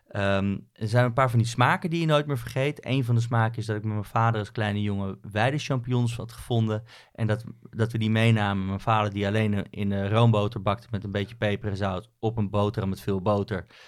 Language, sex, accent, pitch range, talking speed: Dutch, male, Dutch, 105-120 Hz, 235 wpm